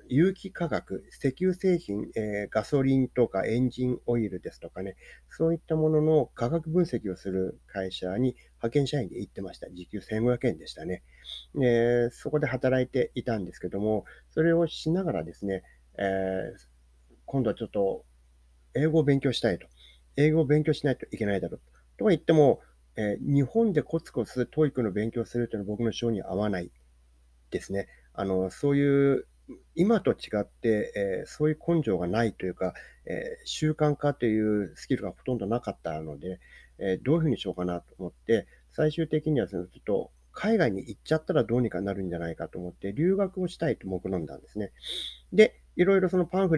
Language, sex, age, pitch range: Japanese, male, 40-59, 95-155 Hz